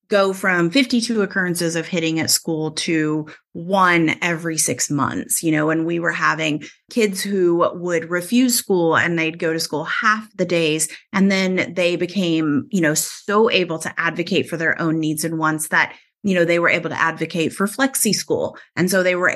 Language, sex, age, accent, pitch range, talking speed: English, female, 30-49, American, 165-215 Hz, 195 wpm